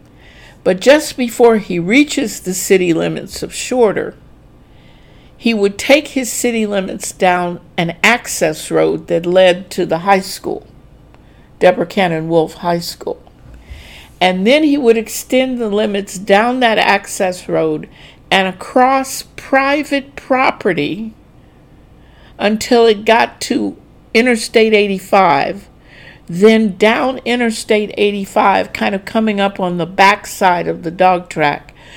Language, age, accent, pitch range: English, 60-79, American, 170-225 Hz